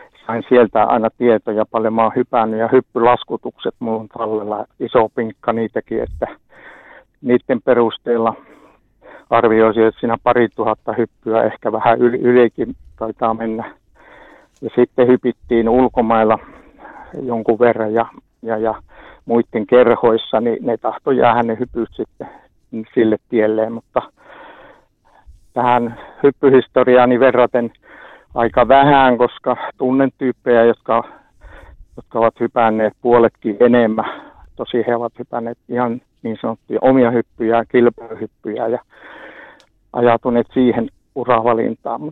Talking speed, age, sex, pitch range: 110 wpm, 60-79, male, 115-125 Hz